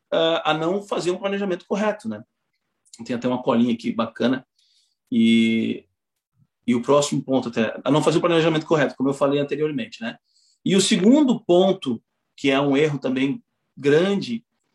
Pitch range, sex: 135-180 Hz, male